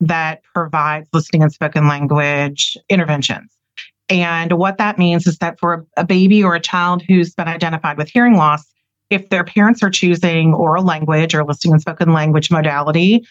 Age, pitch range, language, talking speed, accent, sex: 30-49, 150-185 Hz, English, 170 wpm, American, female